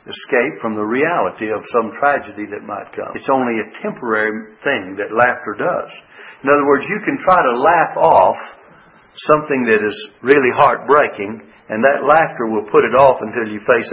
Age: 60-79